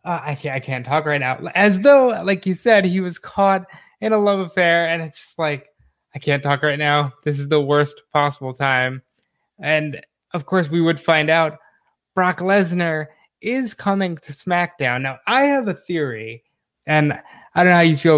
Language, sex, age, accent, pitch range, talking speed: English, male, 20-39, American, 140-185 Hz, 195 wpm